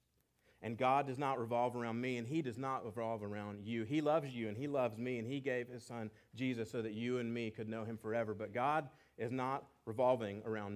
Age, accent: 30-49, American